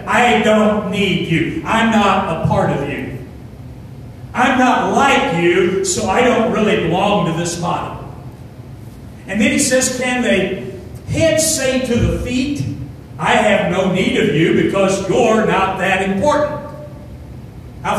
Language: English